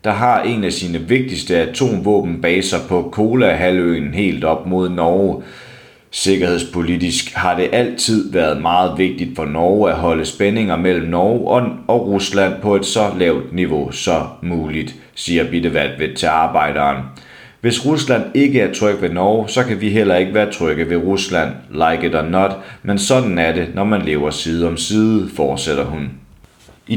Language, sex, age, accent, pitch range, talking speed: Danish, male, 30-49, native, 80-105 Hz, 165 wpm